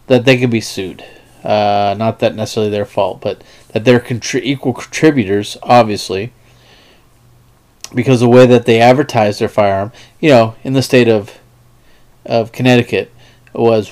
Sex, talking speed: male, 145 wpm